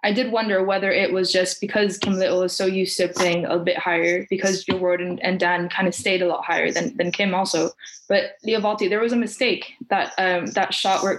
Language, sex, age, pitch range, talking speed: English, female, 20-39, 175-200 Hz, 240 wpm